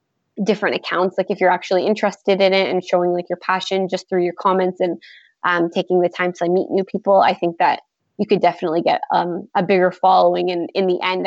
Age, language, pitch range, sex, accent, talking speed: 20-39, English, 175-200 Hz, female, American, 225 wpm